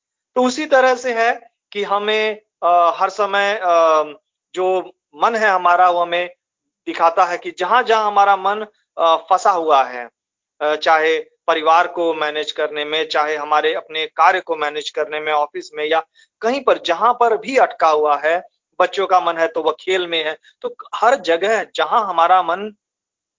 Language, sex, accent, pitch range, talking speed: Hindi, male, native, 155-205 Hz, 165 wpm